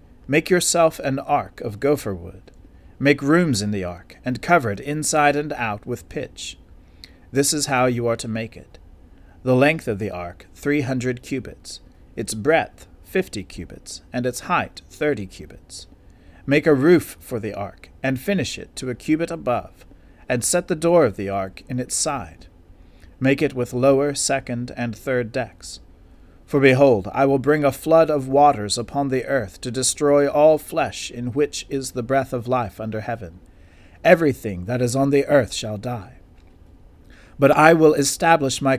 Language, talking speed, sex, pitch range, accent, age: English, 175 wpm, male, 95-145 Hz, American, 40-59